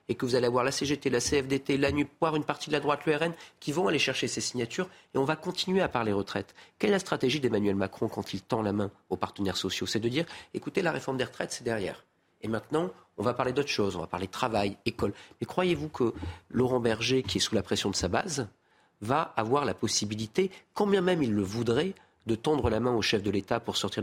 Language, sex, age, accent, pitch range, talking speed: French, male, 40-59, French, 105-150 Hz, 245 wpm